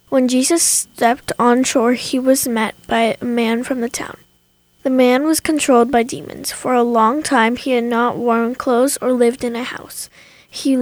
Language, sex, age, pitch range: Korean, female, 10-29, 235-265 Hz